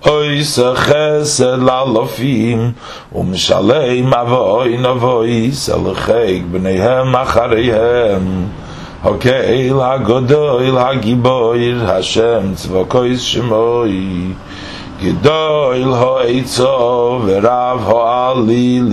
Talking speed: 75 wpm